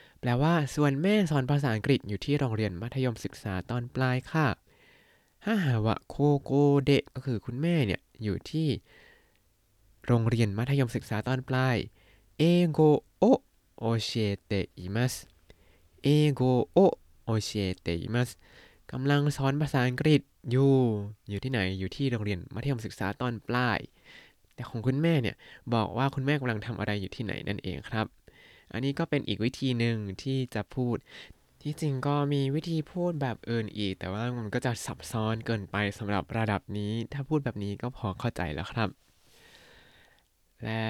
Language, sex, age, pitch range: Thai, male, 20-39, 105-140 Hz